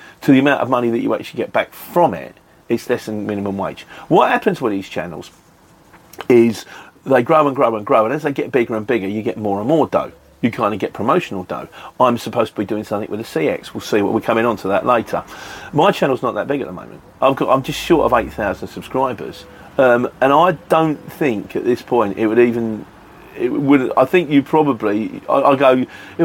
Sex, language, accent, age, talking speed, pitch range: male, English, British, 40-59, 235 wpm, 110-150 Hz